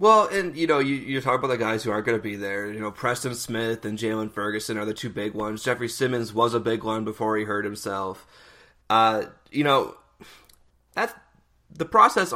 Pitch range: 110-135 Hz